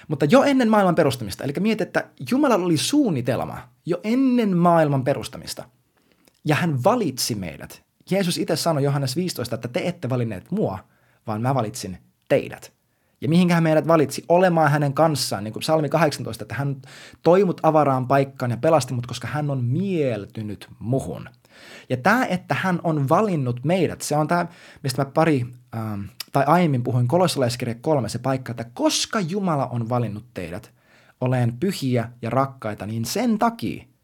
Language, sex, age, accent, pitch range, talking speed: Finnish, male, 20-39, native, 120-165 Hz, 165 wpm